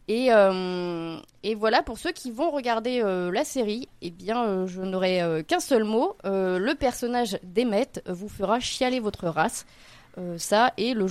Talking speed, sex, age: 190 wpm, female, 20-39